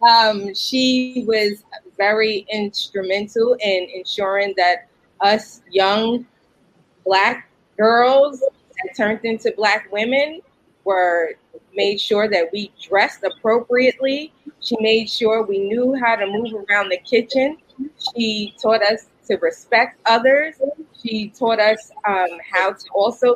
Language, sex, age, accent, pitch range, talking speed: English, female, 30-49, American, 200-255 Hz, 125 wpm